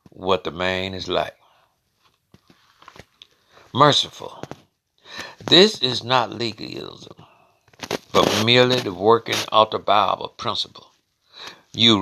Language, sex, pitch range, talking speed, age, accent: English, male, 110-135 Hz, 95 wpm, 60-79, American